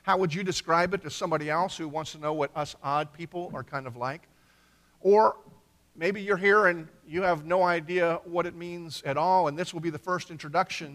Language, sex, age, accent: English, male, 50-69, American